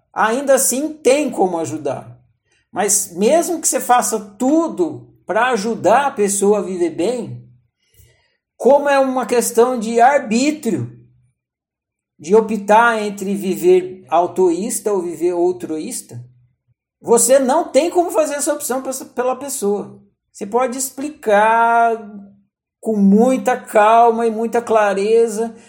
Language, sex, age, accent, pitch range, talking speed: Portuguese, male, 50-69, Brazilian, 195-240 Hz, 115 wpm